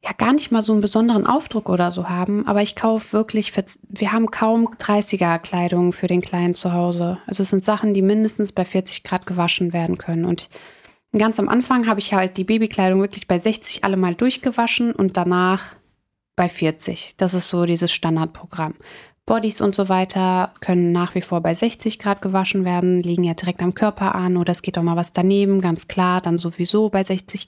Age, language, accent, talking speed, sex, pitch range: 30-49, German, German, 205 wpm, female, 180-210 Hz